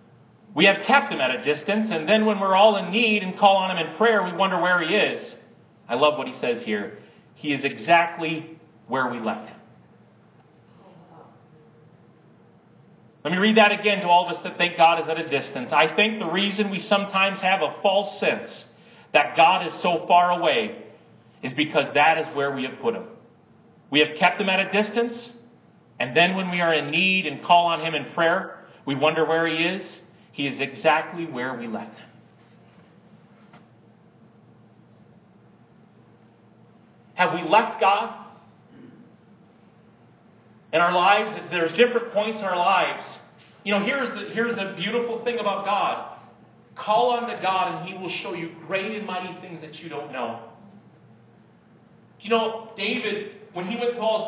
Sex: male